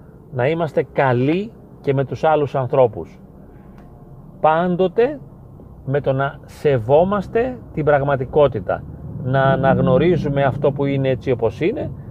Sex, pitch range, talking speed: male, 125-155 Hz, 115 wpm